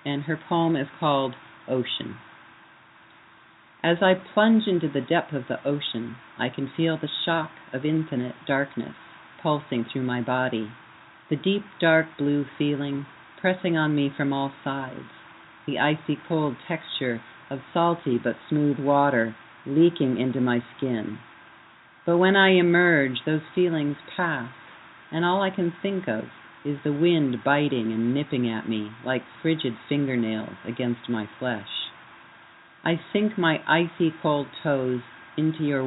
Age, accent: 50-69, American